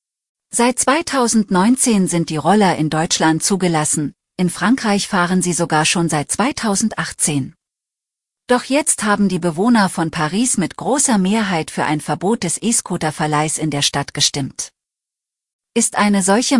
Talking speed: 135 wpm